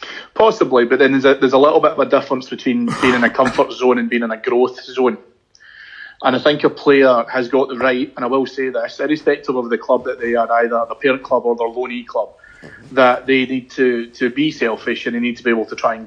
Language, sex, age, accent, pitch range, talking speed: English, male, 30-49, British, 120-135 Hz, 260 wpm